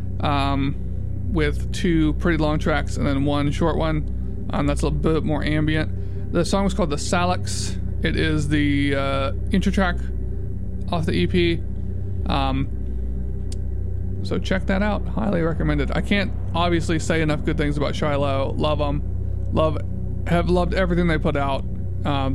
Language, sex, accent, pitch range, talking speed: English, male, American, 90-95 Hz, 155 wpm